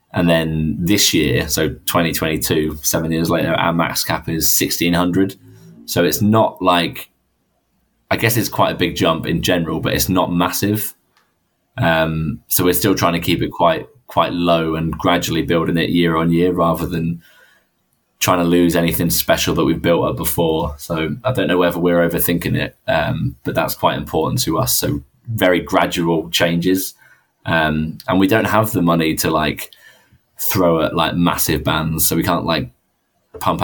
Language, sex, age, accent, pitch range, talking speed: English, male, 20-39, British, 80-90 Hz, 175 wpm